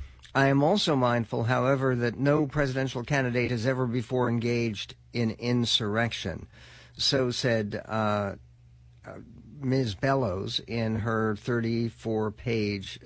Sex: male